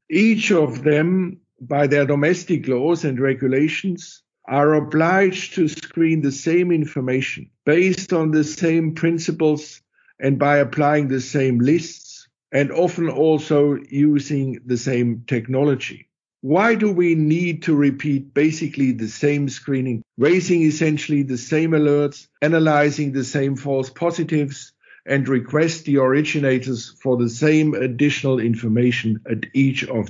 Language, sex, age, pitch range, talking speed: English, male, 50-69, 130-155 Hz, 130 wpm